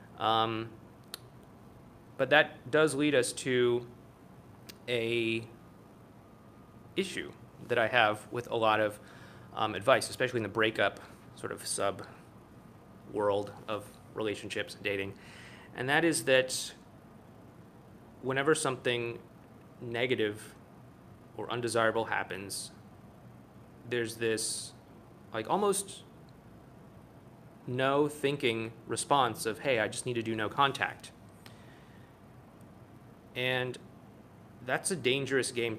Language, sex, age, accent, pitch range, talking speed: English, male, 20-39, American, 115-135 Hz, 100 wpm